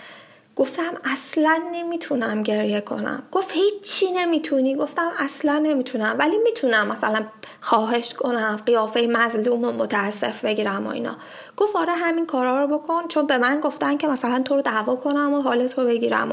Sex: female